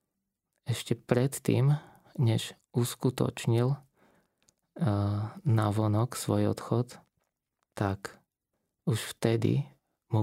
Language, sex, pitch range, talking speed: Slovak, male, 105-125 Hz, 65 wpm